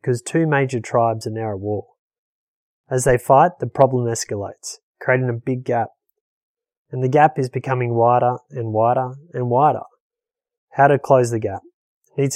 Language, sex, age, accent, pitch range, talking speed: English, male, 20-39, Australian, 115-140 Hz, 165 wpm